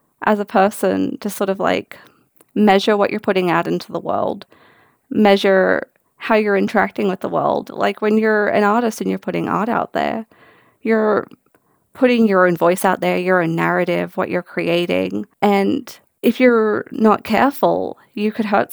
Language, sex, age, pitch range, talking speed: English, female, 30-49, 170-210 Hz, 175 wpm